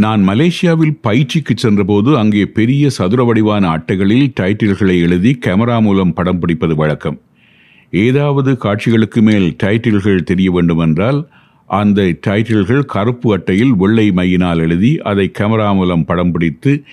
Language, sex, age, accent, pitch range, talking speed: Tamil, male, 50-69, native, 90-115 Hz, 120 wpm